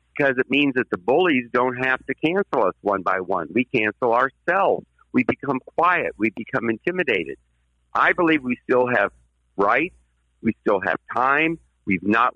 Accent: American